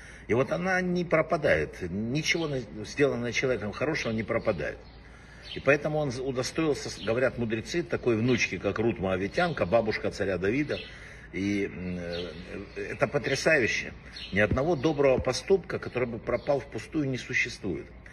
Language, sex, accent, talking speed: Russian, male, native, 125 wpm